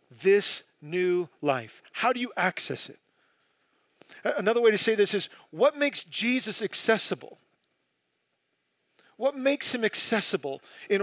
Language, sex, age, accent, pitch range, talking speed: English, male, 40-59, American, 150-220 Hz, 125 wpm